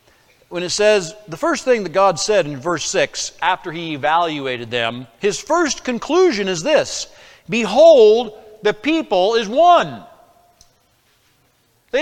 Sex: male